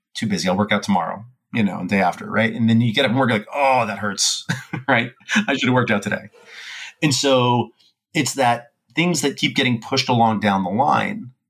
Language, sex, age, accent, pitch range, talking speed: English, male, 30-49, American, 100-125 Hz, 230 wpm